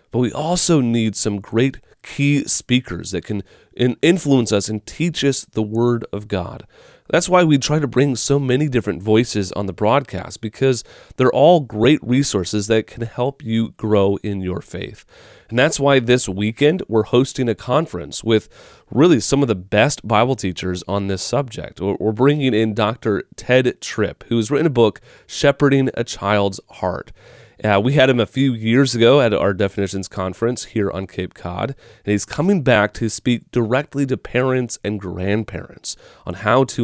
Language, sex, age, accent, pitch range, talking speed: English, male, 30-49, American, 105-140 Hz, 180 wpm